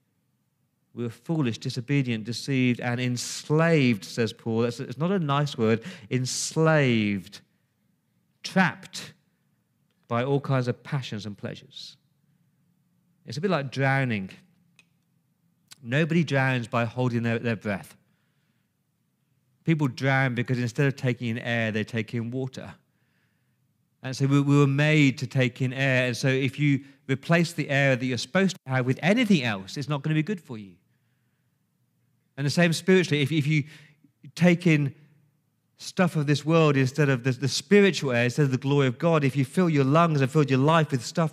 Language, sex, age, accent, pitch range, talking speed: English, male, 40-59, British, 130-165 Hz, 170 wpm